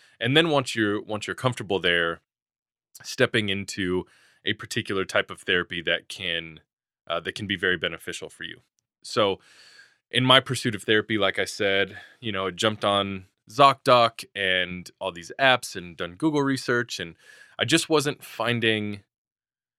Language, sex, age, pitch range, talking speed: English, male, 20-39, 95-125 Hz, 160 wpm